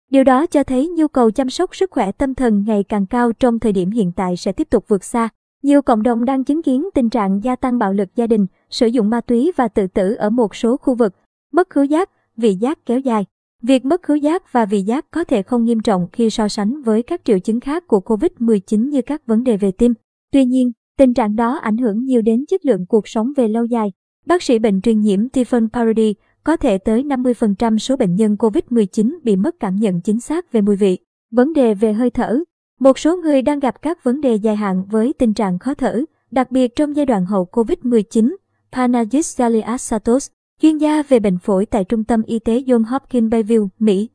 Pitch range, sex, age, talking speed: 220-270 Hz, male, 20-39, 230 wpm